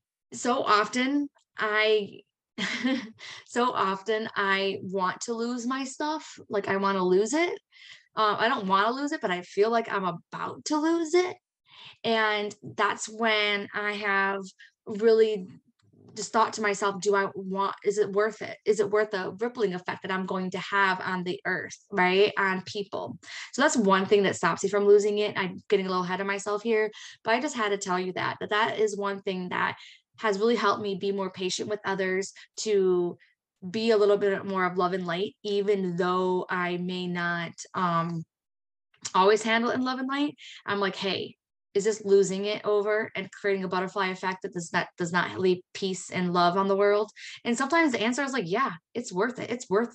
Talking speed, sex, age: 200 wpm, female, 20-39